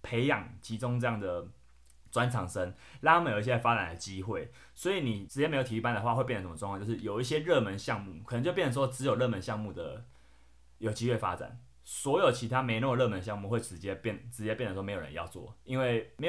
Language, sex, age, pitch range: Chinese, male, 20-39, 95-120 Hz